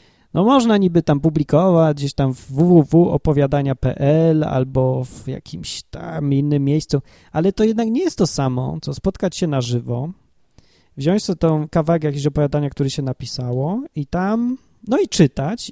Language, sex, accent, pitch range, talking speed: Polish, male, native, 135-195 Hz, 155 wpm